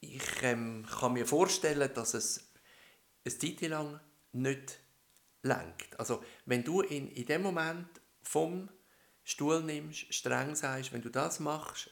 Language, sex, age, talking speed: German, male, 60-79, 140 wpm